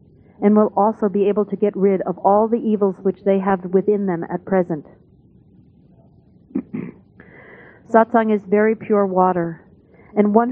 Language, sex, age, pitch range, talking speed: English, female, 40-59, 195-220 Hz, 150 wpm